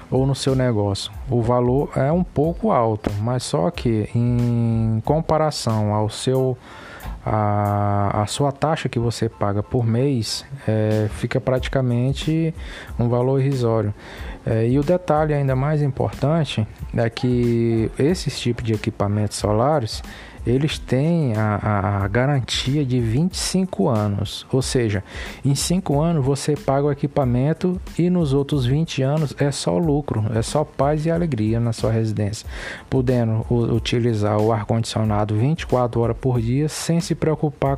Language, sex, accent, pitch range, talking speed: Portuguese, male, Brazilian, 110-145 Hz, 145 wpm